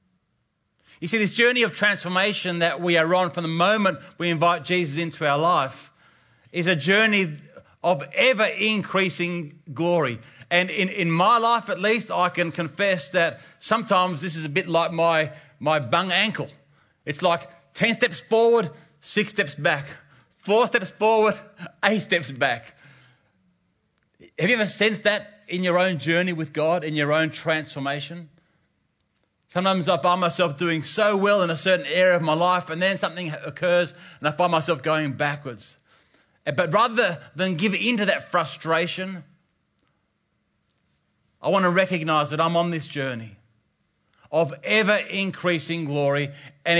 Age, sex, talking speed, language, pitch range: 30-49, male, 155 wpm, English, 145-185 Hz